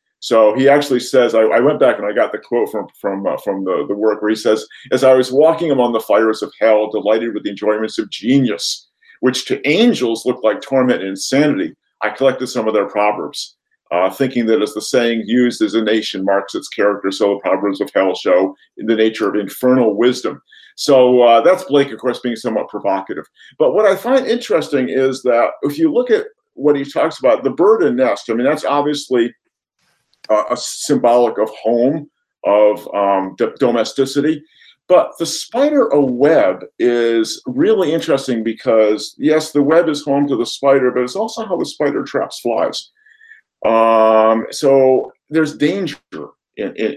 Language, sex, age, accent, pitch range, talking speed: English, male, 50-69, American, 110-155 Hz, 190 wpm